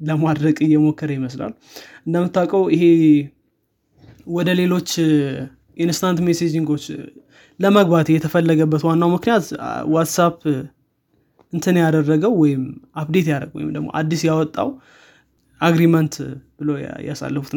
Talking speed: 90 wpm